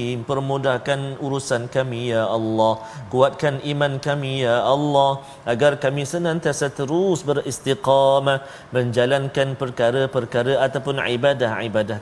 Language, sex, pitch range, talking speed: Malayalam, male, 115-140 Hz, 100 wpm